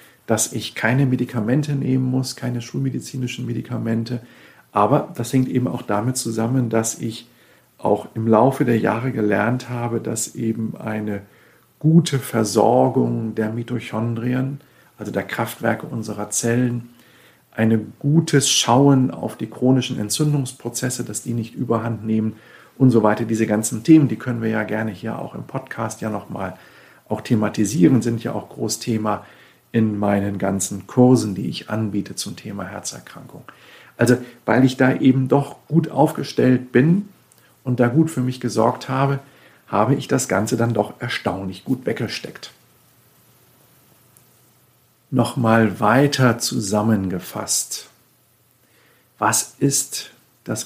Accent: German